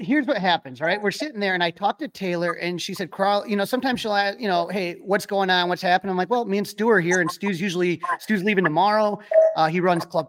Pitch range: 175-215 Hz